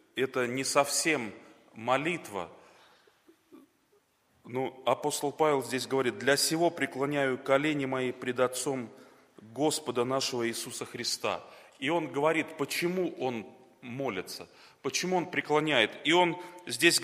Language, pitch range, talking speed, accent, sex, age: Russian, 125-165 Hz, 115 wpm, native, male, 30-49